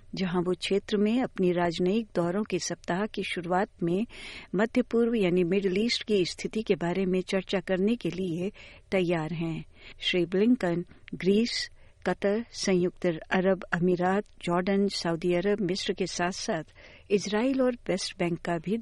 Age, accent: 60-79, native